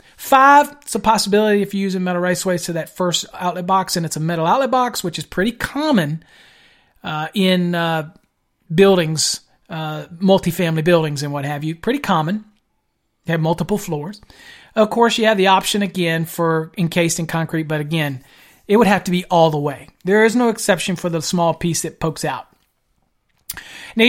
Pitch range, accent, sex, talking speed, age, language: 170-220 Hz, American, male, 190 wpm, 40-59, English